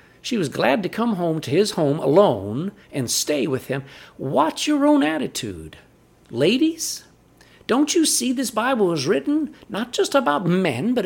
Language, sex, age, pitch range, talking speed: English, male, 50-69, 130-200 Hz, 170 wpm